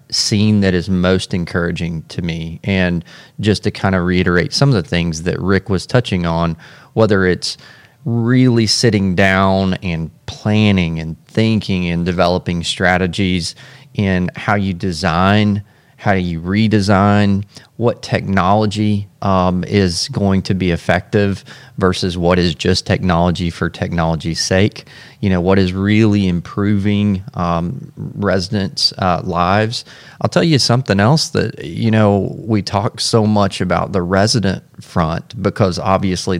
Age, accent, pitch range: 30-49, American, 90-105 Hz